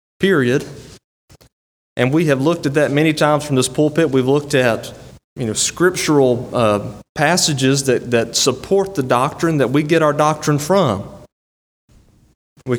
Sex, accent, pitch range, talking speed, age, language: male, American, 120-160 Hz, 150 wpm, 30-49, English